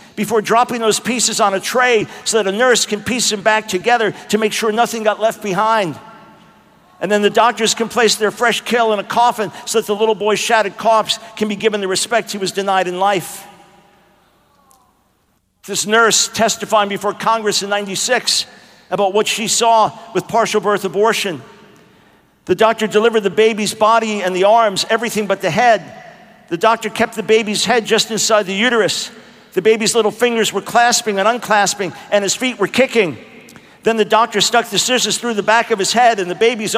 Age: 50-69